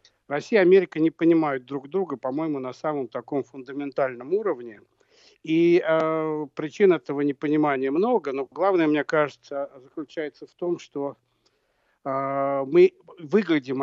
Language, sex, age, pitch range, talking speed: Russian, male, 60-79, 135-180 Hz, 130 wpm